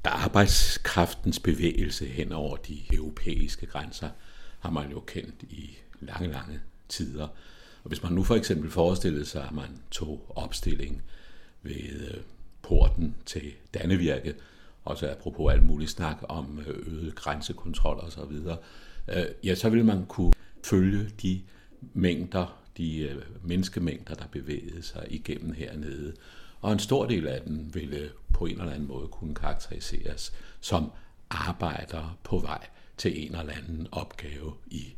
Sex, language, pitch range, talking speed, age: male, Danish, 75-90 Hz, 140 wpm, 60-79